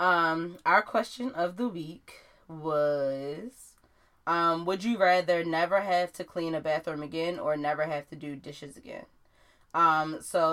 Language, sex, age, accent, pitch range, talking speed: English, female, 20-39, American, 150-170 Hz, 155 wpm